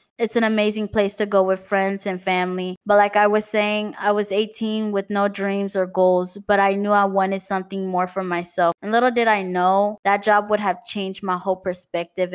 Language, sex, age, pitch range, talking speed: English, female, 20-39, 180-210 Hz, 220 wpm